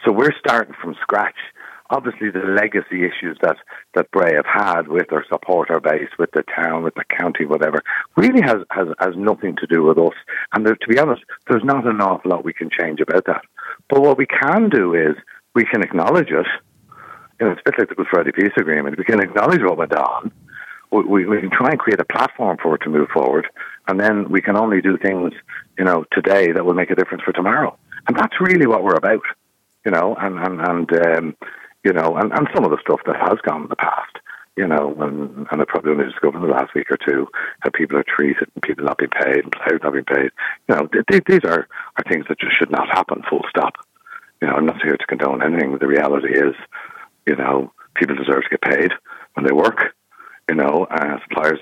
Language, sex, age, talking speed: English, male, 60-79, 230 wpm